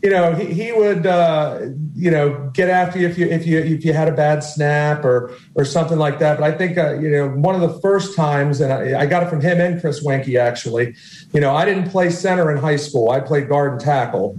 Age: 40-59